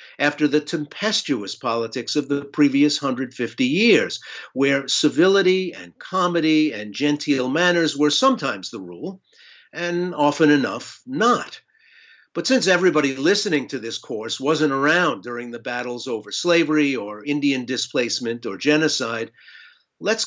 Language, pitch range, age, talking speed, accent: English, 130-175 Hz, 50-69, 130 wpm, American